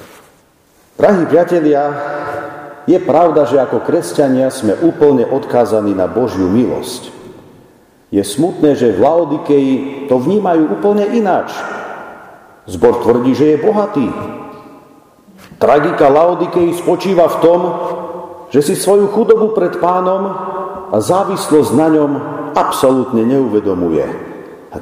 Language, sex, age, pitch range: Slovak, male, 50-69, 135-210 Hz